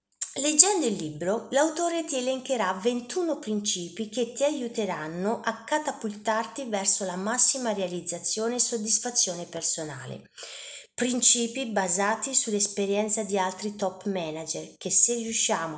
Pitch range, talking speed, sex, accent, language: 185-240 Hz, 115 wpm, female, native, Italian